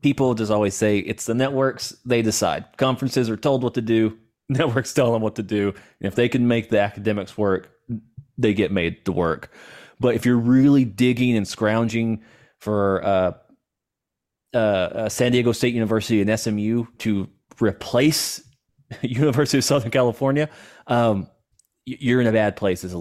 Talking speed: 165 wpm